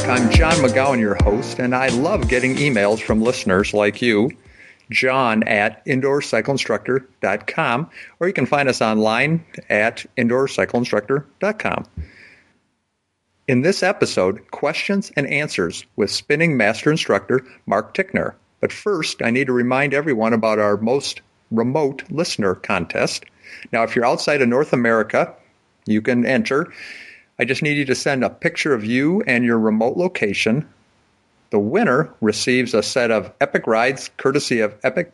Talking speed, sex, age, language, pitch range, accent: 145 wpm, male, 50-69, English, 110-140 Hz, American